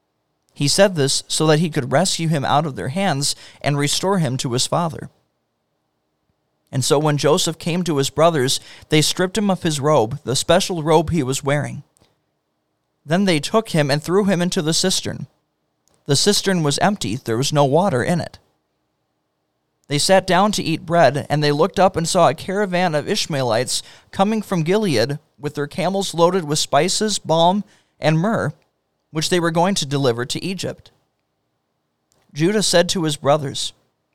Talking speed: 175 wpm